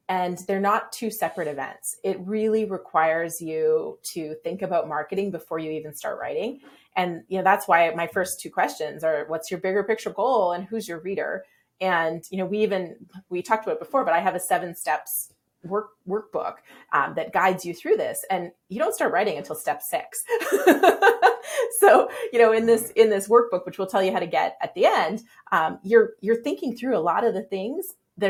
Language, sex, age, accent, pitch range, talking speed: English, female, 30-49, American, 175-230 Hz, 210 wpm